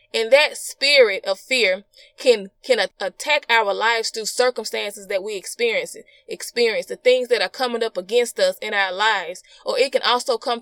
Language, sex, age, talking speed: English, female, 20-39, 180 wpm